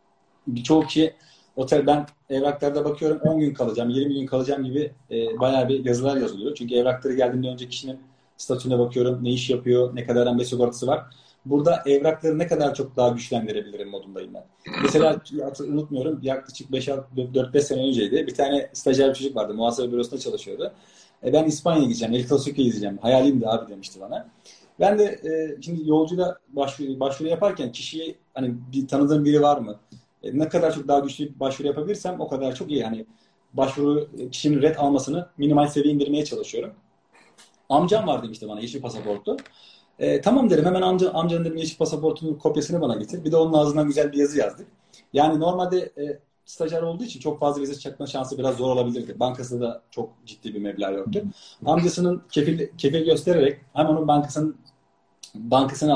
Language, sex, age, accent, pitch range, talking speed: English, male, 40-59, Turkish, 125-155 Hz, 175 wpm